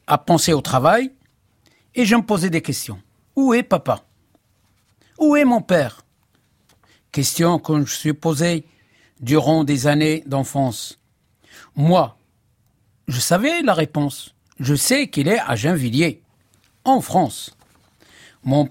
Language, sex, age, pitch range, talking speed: French, male, 60-79, 130-185 Hz, 130 wpm